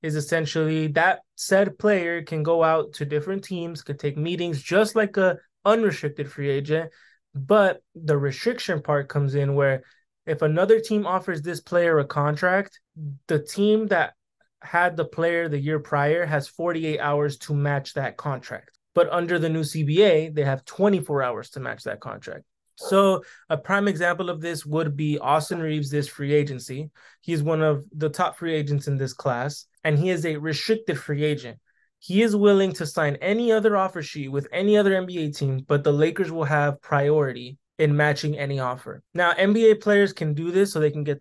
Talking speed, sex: 185 wpm, male